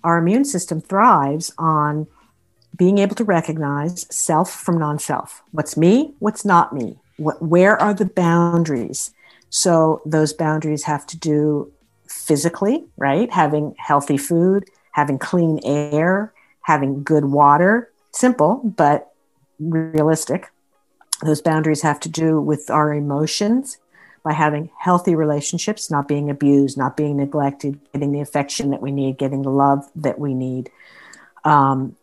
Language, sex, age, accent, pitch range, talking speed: English, female, 50-69, American, 145-175 Hz, 135 wpm